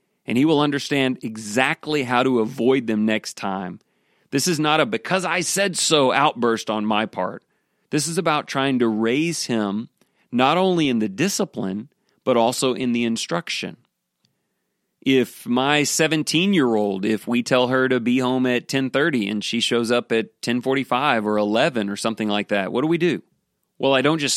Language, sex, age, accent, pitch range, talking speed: English, male, 30-49, American, 115-145 Hz, 175 wpm